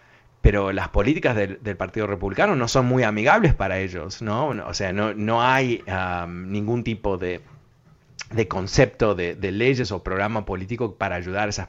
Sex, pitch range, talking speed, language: male, 95-120 Hz, 175 wpm, Spanish